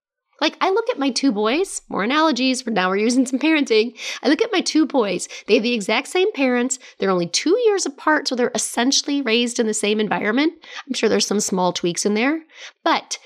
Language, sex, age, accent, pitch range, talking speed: English, female, 30-49, American, 210-290 Hz, 220 wpm